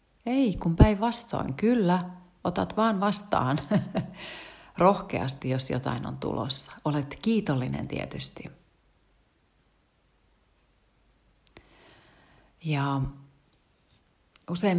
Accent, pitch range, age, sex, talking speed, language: native, 130-170 Hz, 40-59, female, 70 wpm, Finnish